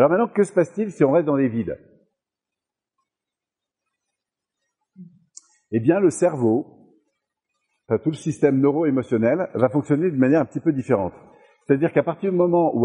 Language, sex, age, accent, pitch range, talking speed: French, male, 50-69, French, 115-165 Hz, 155 wpm